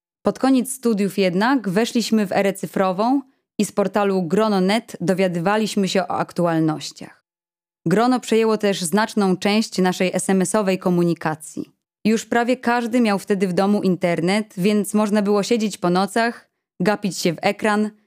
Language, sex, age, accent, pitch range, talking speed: Polish, female, 20-39, native, 175-215 Hz, 140 wpm